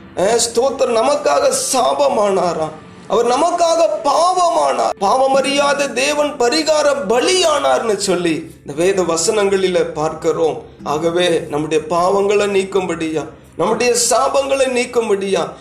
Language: Tamil